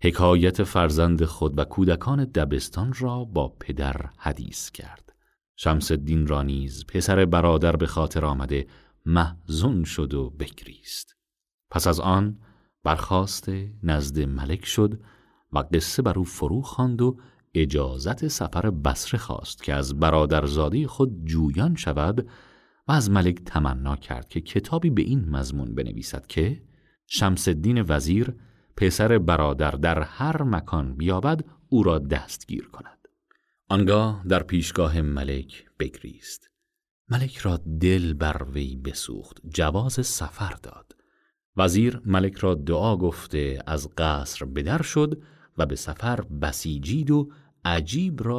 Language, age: Persian, 40-59